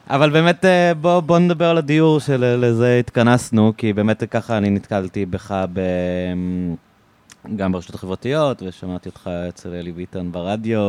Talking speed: 145 wpm